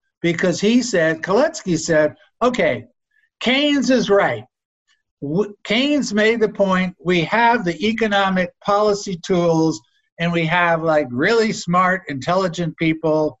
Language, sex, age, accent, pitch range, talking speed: English, male, 60-79, American, 155-220 Hz, 120 wpm